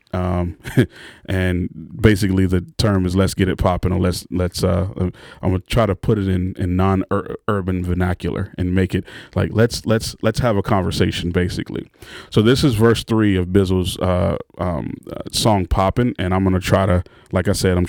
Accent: American